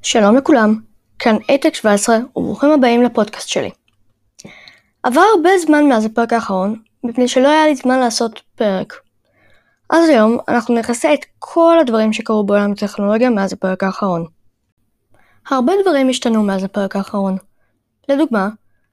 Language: Hebrew